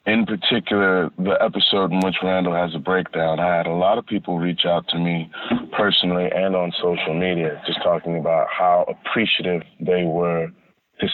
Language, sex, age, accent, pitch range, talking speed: English, male, 30-49, American, 85-95 Hz, 180 wpm